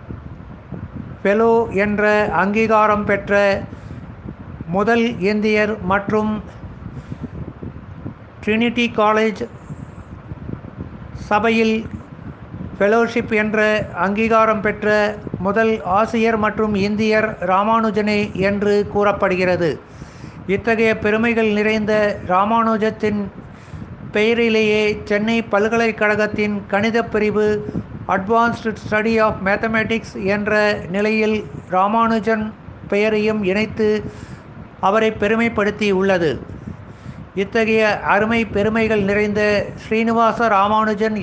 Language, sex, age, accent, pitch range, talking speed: Tamil, male, 60-79, native, 200-220 Hz, 70 wpm